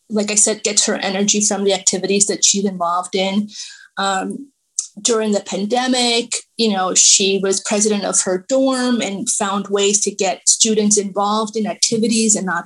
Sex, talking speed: female, 170 wpm